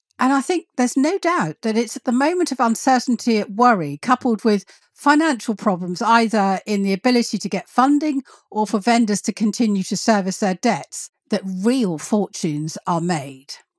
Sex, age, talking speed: female, 50-69, 175 wpm